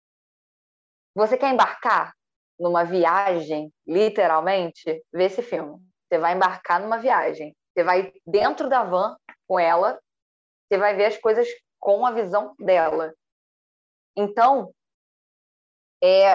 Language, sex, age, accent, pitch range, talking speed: Portuguese, female, 10-29, Brazilian, 170-205 Hz, 115 wpm